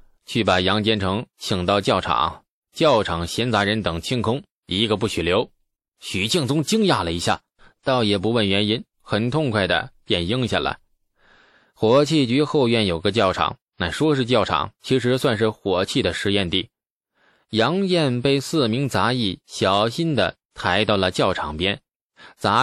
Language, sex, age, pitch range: Chinese, male, 20-39, 95-135 Hz